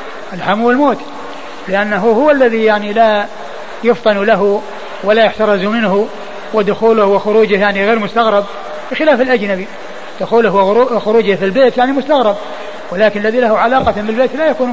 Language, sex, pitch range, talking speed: Arabic, male, 195-230 Hz, 130 wpm